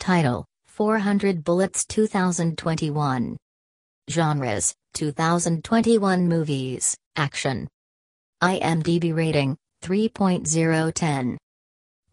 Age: 40-59